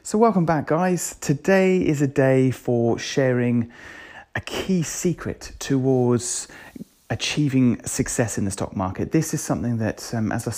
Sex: male